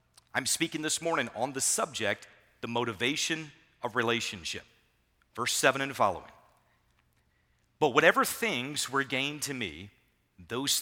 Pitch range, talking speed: 110-145 Hz, 130 wpm